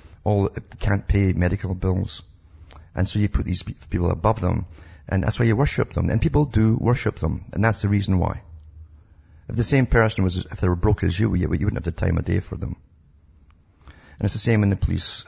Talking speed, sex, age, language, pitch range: 220 wpm, male, 50-69, English, 85-105 Hz